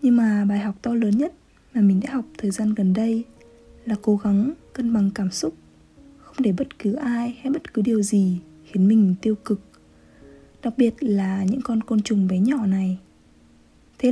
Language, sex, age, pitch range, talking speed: Vietnamese, female, 20-39, 200-250 Hz, 200 wpm